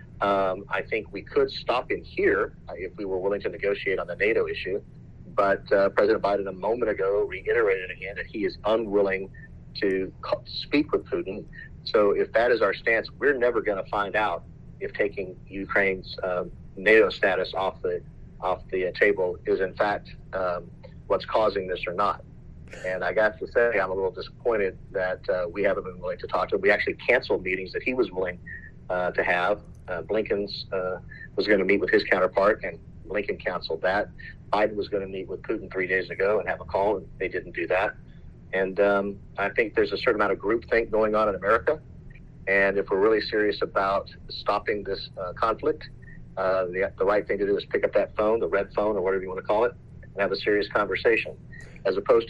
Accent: American